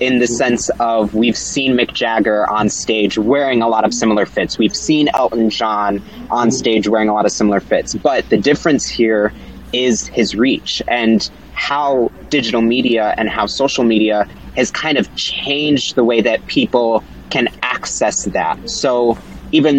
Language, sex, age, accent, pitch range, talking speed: English, male, 20-39, American, 105-125 Hz, 170 wpm